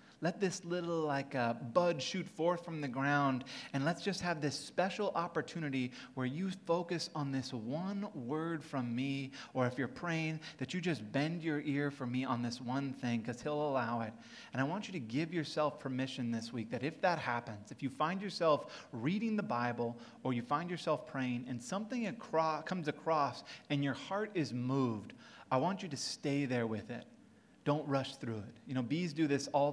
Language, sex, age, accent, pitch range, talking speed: English, male, 30-49, American, 125-160 Hz, 205 wpm